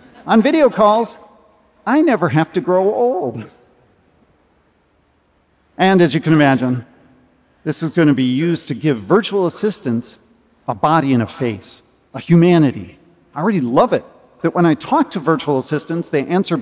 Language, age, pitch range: Japanese, 50-69, 125-180 Hz